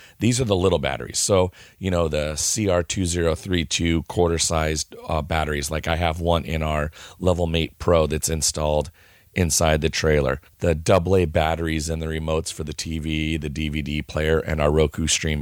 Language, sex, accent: English, male, American